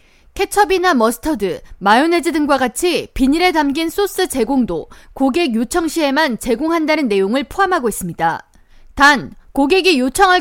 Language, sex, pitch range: Korean, female, 255-360 Hz